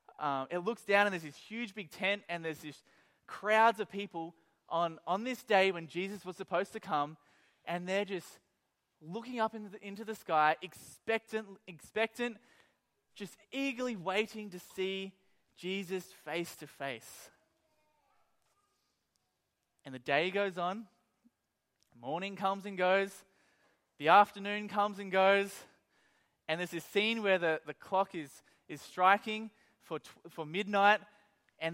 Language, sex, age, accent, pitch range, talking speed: English, male, 20-39, Australian, 170-220 Hz, 145 wpm